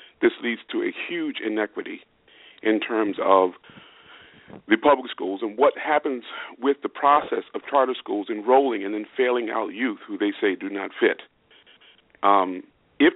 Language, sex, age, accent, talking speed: English, male, 40-59, American, 160 wpm